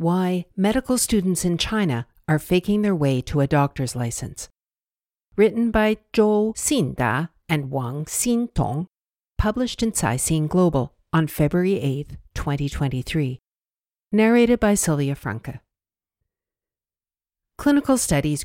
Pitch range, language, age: 140-195 Hz, English, 60-79